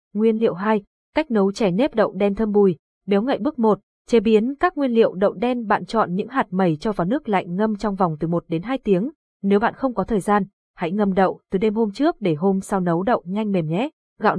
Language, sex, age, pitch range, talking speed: Vietnamese, female, 20-39, 190-235 Hz, 255 wpm